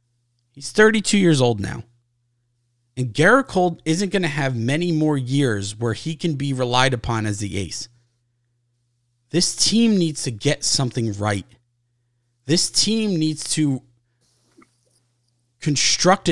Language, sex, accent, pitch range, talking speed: English, male, American, 120-145 Hz, 130 wpm